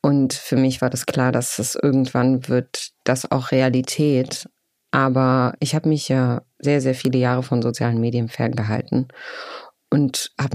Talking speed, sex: 160 wpm, female